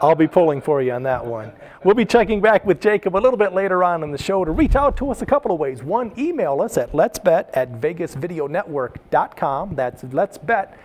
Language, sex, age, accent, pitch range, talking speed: English, male, 40-59, American, 145-205 Hz, 205 wpm